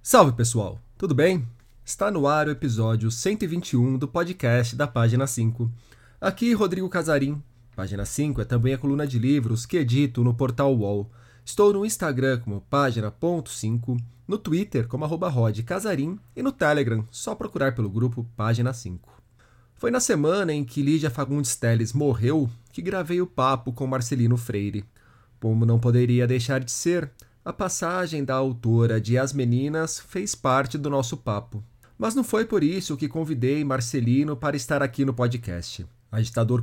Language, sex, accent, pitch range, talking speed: Portuguese, male, Brazilian, 120-160 Hz, 155 wpm